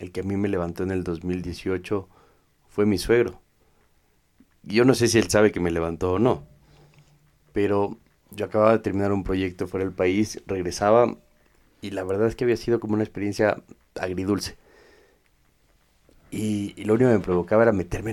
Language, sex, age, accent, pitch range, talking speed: Spanish, male, 40-59, Mexican, 95-115 Hz, 180 wpm